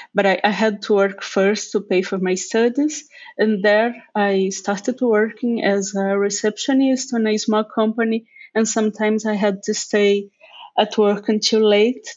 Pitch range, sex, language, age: 195-220 Hz, female, English, 30-49